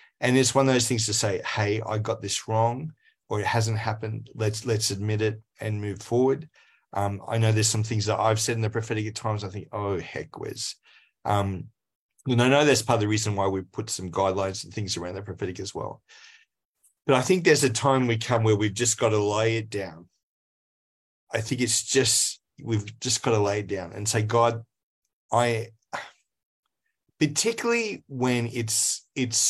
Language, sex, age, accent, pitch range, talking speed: English, male, 30-49, Australian, 105-120 Hz, 200 wpm